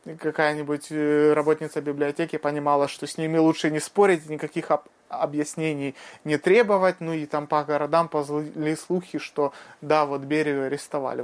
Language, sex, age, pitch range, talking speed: Russian, male, 30-49, 145-180 Hz, 145 wpm